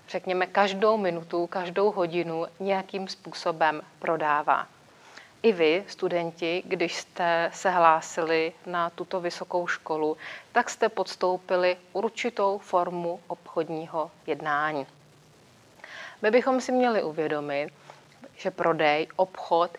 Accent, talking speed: native, 105 wpm